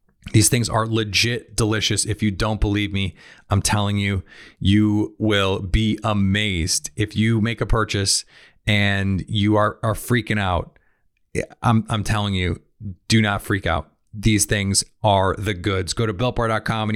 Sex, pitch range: male, 105-120 Hz